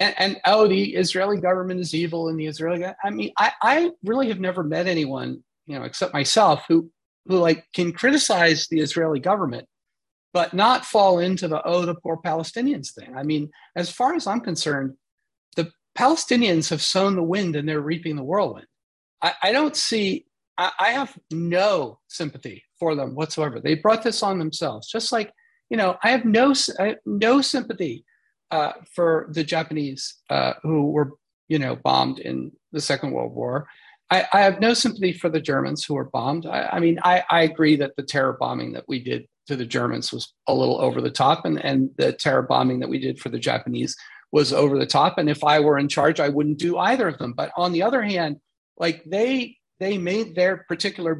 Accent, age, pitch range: American, 40-59, 155-205 Hz